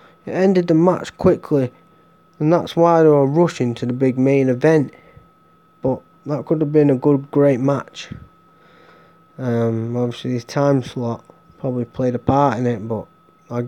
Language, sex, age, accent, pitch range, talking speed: English, male, 20-39, British, 115-155 Hz, 165 wpm